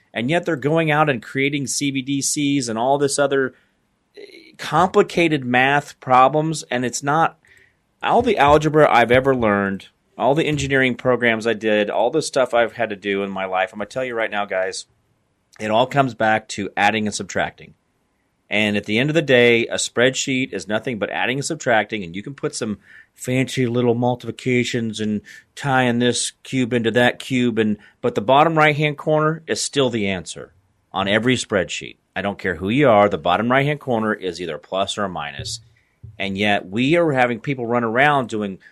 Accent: American